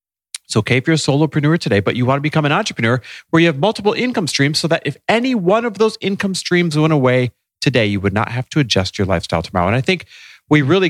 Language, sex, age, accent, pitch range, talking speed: English, male, 30-49, American, 95-160 Hz, 255 wpm